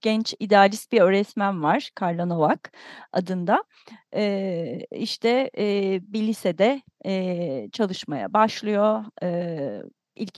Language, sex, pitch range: Turkish, female, 180-300 Hz